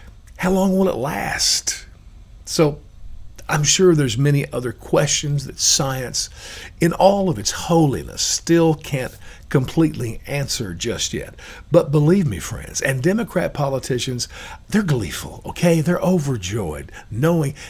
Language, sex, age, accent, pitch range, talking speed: English, male, 50-69, American, 110-165 Hz, 130 wpm